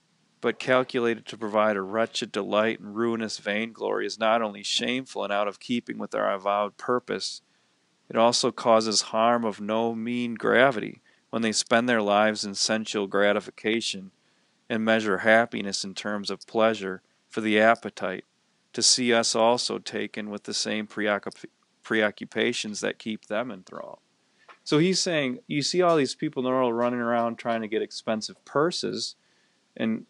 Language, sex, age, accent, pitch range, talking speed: English, male, 40-59, American, 105-115 Hz, 160 wpm